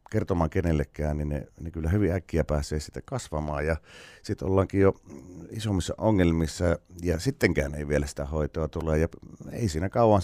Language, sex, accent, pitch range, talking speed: Finnish, male, native, 80-95 Hz, 165 wpm